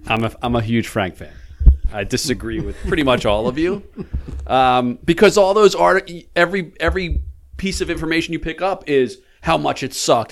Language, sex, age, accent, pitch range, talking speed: English, male, 40-59, American, 110-175 Hz, 190 wpm